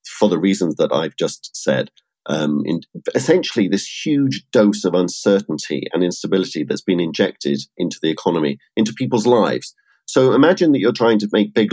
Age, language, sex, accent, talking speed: 50-69, English, male, British, 170 wpm